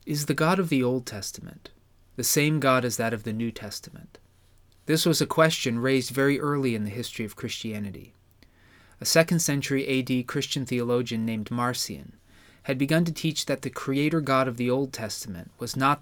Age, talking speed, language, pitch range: 30-49, 185 wpm, English, 105-140 Hz